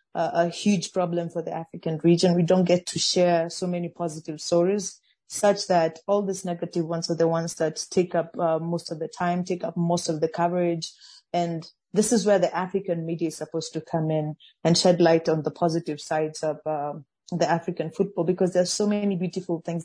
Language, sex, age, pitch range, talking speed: English, female, 30-49, 165-185 Hz, 210 wpm